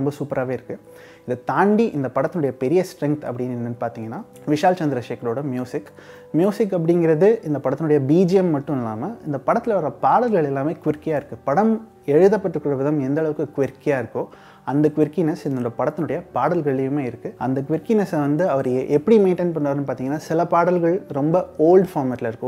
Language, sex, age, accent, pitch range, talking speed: Tamil, male, 30-49, native, 130-170 Hz, 55 wpm